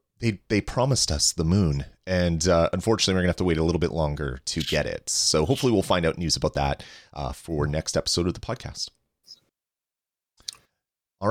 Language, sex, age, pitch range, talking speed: English, male, 30-49, 80-110 Hz, 195 wpm